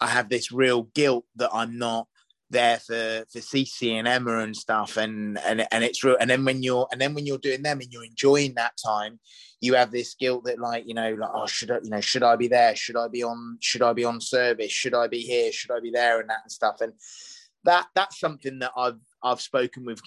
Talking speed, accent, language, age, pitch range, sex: 250 wpm, British, English, 20-39, 115-140 Hz, male